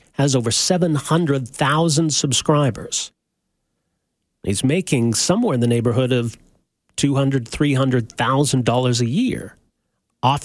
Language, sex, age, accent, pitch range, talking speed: English, male, 40-59, American, 120-170 Hz, 100 wpm